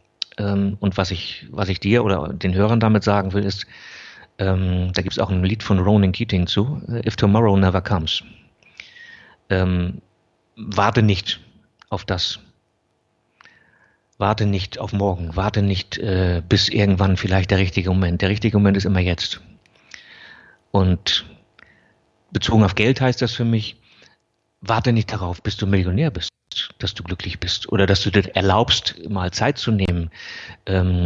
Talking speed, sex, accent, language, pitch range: 155 wpm, male, German, German, 95-105 Hz